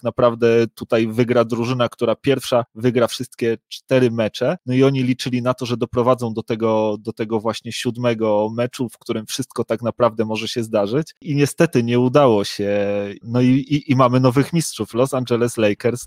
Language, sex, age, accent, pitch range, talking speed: Polish, male, 30-49, native, 115-130 Hz, 180 wpm